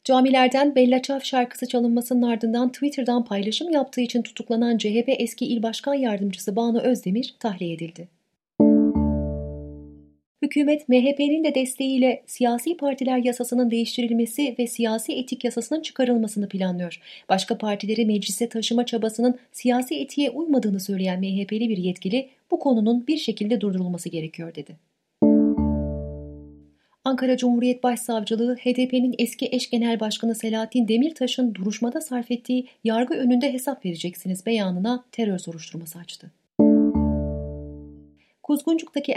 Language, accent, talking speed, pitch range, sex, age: Turkish, native, 115 wpm, 190-255 Hz, female, 30-49